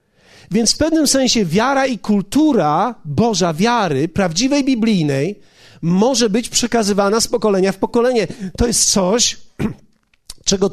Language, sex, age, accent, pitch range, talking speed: Polish, male, 40-59, native, 180-245 Hz, 125 wpm